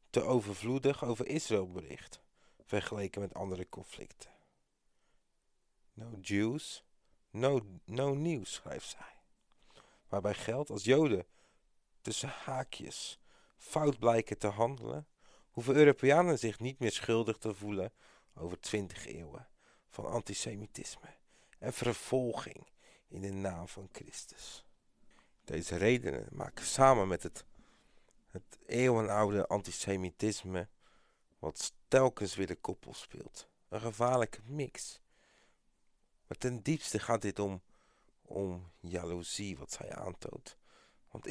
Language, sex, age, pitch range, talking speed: Dutch, male, 40-59, 100-125 Hz, 110 wpm